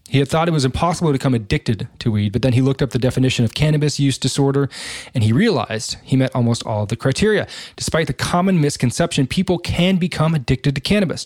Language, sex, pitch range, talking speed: English, male, 120-145 Hz, 225 wpm